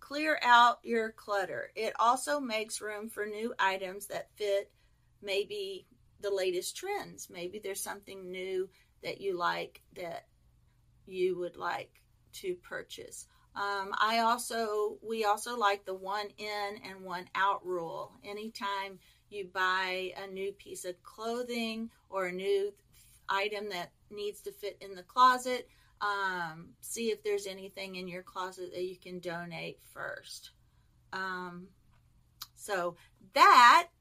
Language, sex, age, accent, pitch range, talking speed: English, female, 40-59, American, 190-235 Hz, 140 wpm